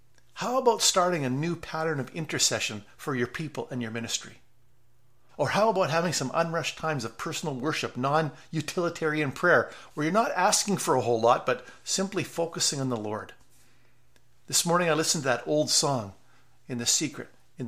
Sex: male